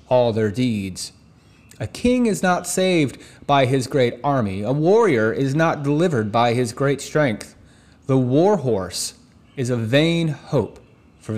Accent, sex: American, male